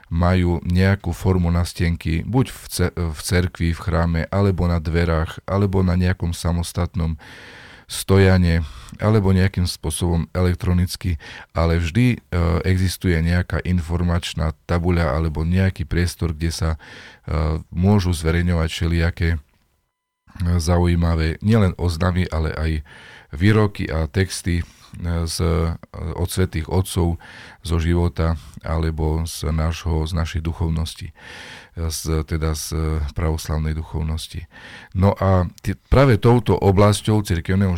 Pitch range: 80-95 Hz